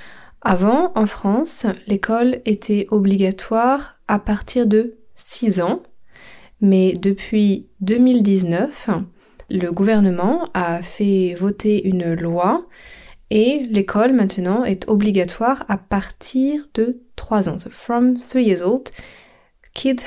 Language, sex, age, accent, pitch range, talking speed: French, female, 20-39, French, 190-230 Hz, 110 wpm